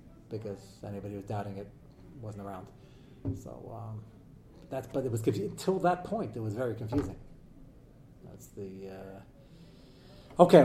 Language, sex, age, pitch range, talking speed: English, male, 40-59, 145-210 Hz, 145 wpm